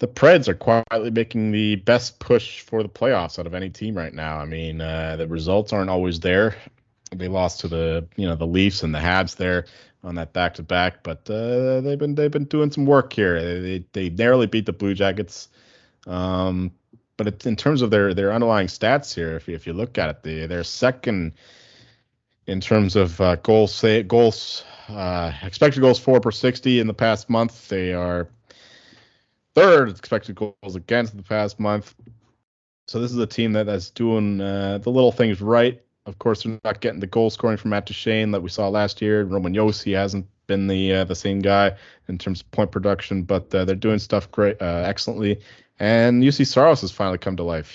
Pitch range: 95-115 Hz